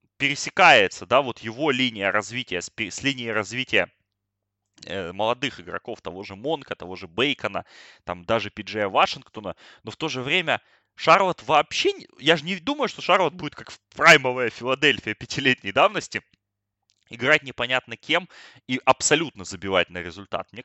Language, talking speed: Russian, 145 wpm